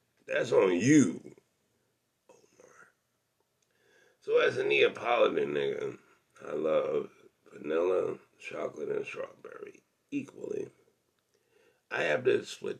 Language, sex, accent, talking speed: English, male, American, 95 wpm